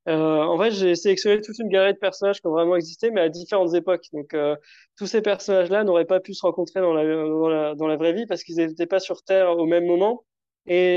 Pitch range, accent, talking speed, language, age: 170-200 Hz, French, 250 wpm, French, 20-39